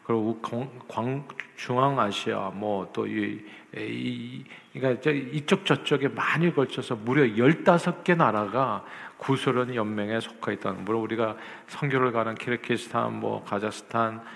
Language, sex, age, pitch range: Korean, male, 50-69, 110-135 Hz